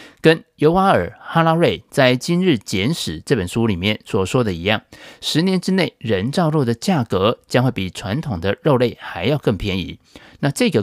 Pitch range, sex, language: 105-150 Hz, male, Chinese